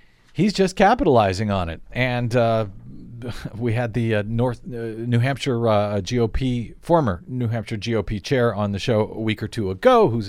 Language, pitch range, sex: English, 110-145 Hz, male